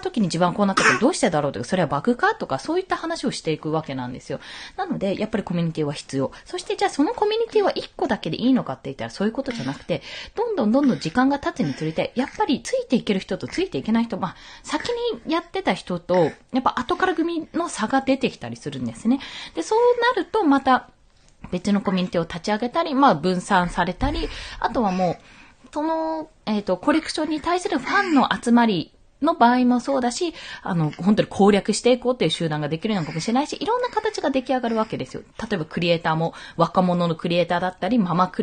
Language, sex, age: Japanese, female, 20-39